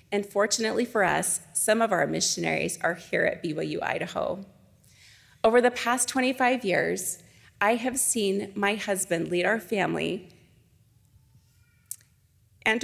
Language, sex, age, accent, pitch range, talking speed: English, female, 30-49, American, 180-240 Hz, 120 wpm